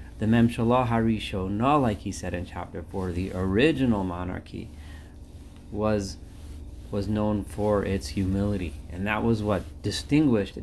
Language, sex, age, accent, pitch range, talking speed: English, male, 30-49, American, 85-115 Hz, 135 wpm